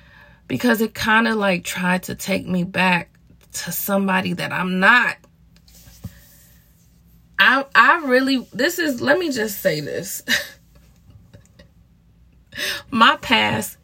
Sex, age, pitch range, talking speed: female, 20-39, 170-225 Hz, 115 wpm